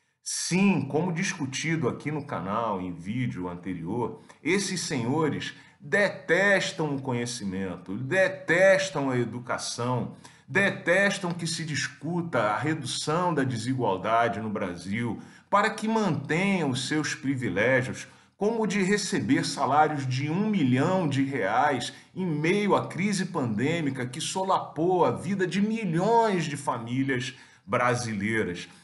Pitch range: 120-175 Hz